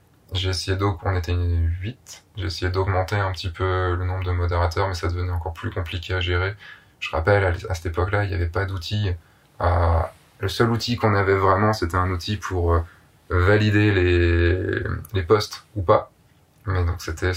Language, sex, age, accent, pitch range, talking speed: French, male, 20-39, French, 90-100 Hz, 200 wpm